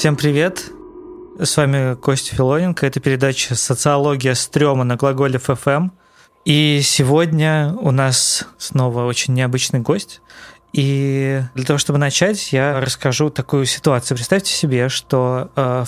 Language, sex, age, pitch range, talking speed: Russian, male, 20-39, 130-150 Hz, 130 wpm